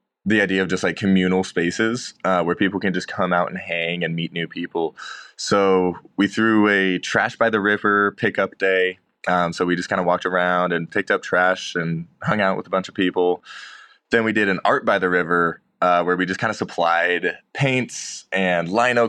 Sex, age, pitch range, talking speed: male, 20-39, 90-110 Hz, 215 wpm